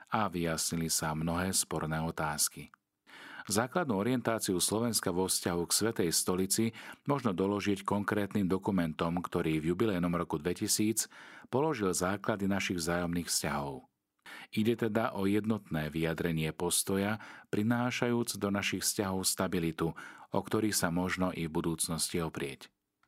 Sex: male